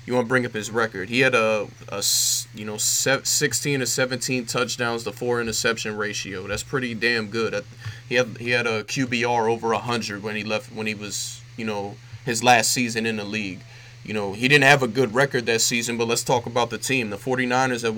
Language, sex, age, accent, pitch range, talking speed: English, male, 20-39, American, 110-125 Hz, 225 wpm